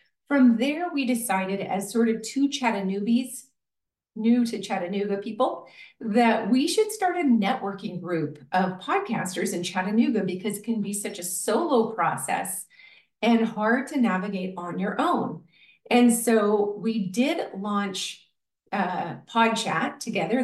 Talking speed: 140 wpm